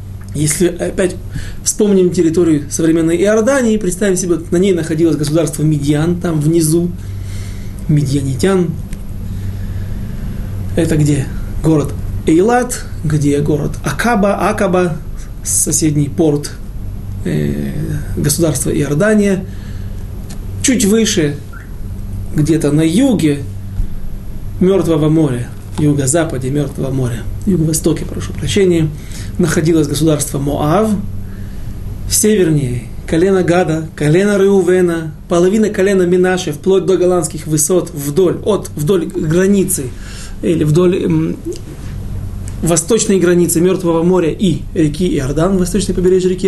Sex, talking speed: male, 100 wpm